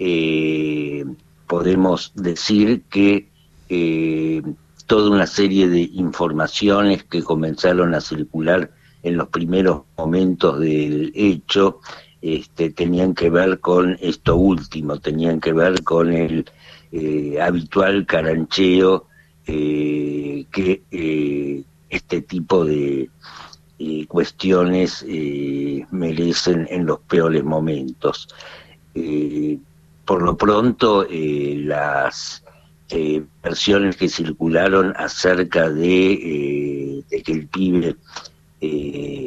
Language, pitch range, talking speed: Spanish, 80-90 Hz, 100 wpm